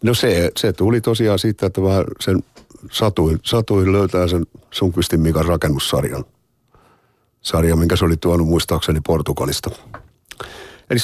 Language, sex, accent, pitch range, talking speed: Finnish, male, native, 85-115 Hz, 130 wpm